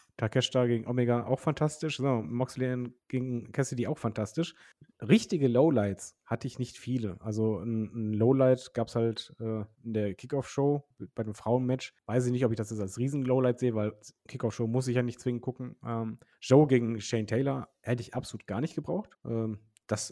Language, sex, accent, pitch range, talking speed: German, male, German, 115-140 Hz, 190 wpm